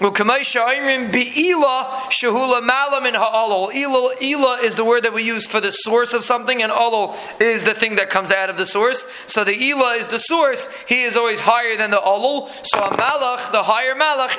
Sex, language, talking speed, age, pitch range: male, English, 170 wpm, 20-39, 210-250 Hz